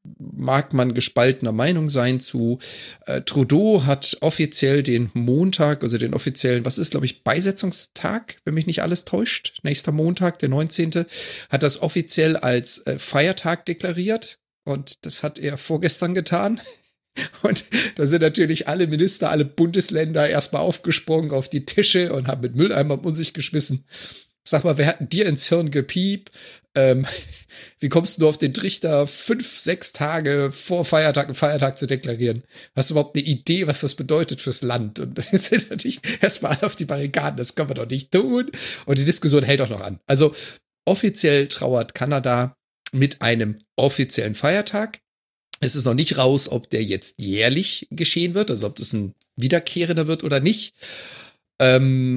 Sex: male